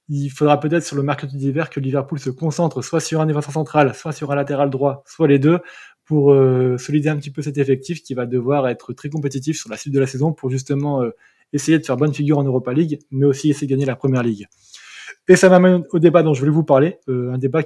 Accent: French